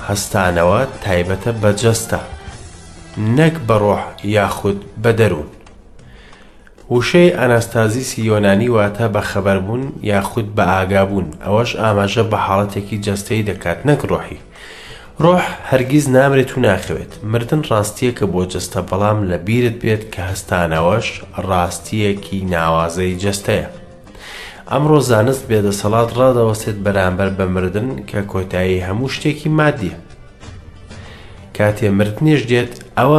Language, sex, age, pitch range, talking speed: English, male, 30-49, 95-120 Hz, 120 wpm